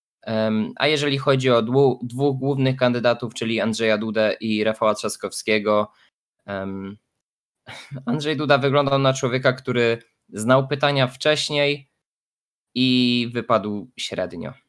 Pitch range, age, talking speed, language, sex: 110-130 Hz, 20-39, 100 wpm, Polish, male